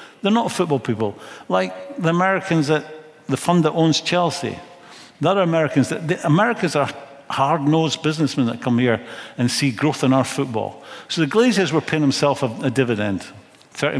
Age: 50-69